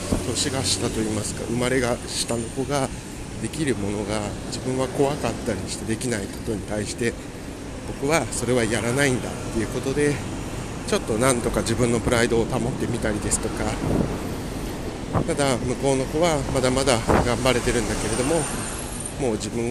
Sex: male